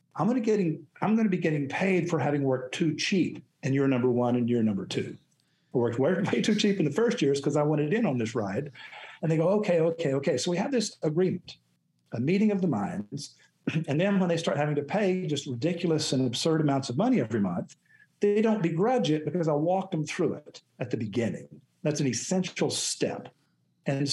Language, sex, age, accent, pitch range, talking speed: English, male, 50-69, American, 130-180 Hz, 220 wpm